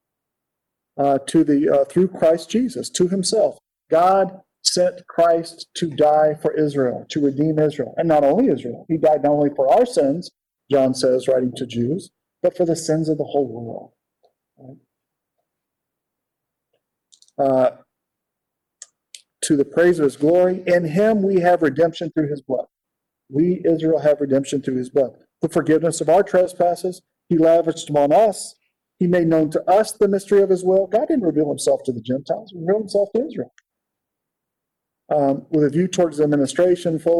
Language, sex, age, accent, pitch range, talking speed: English, male, 50-69, American, 145-180 Hz, 170 wpm